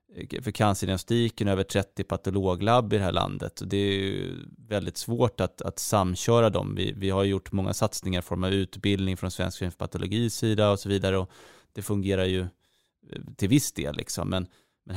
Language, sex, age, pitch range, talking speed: Swedish, male, 30-49, 90-105 Hz, 180 wpm